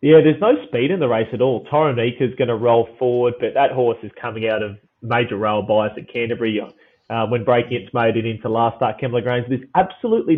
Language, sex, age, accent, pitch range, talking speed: English, male, 20-39, Australian, 110-135 Hz, 230 wpm